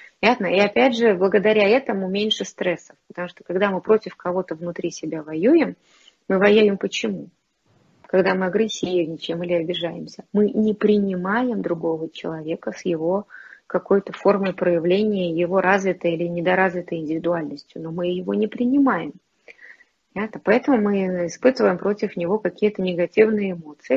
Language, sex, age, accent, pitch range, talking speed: Russian, female, 20-39, native, 175-225 Hz, 130 wpm